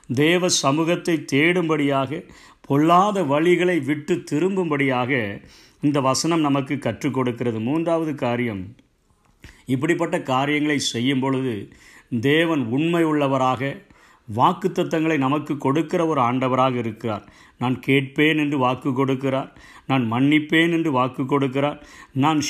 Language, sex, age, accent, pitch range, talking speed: Tamil, male, 50-69, native, 130-165 Hz, 100 wpm